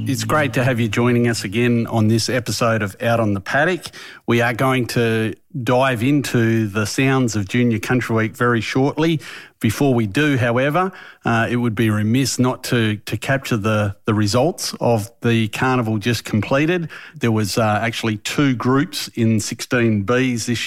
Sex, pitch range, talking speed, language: male, 110-130 Hz, 175 wpm, English